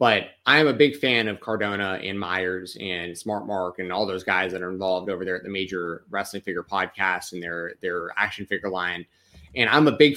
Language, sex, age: English, male, 20-39